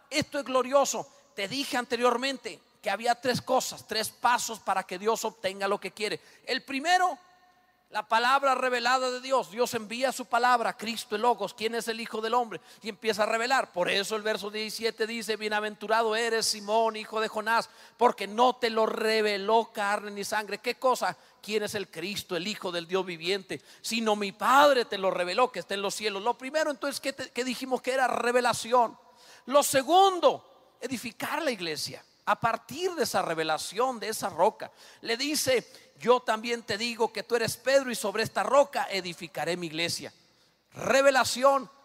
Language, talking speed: Spanish, 180 wpm